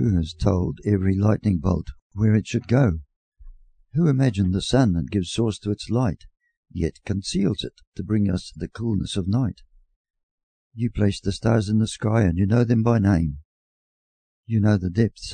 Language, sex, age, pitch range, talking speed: English, male, 50-69, 90-115 Hz, 185 wpm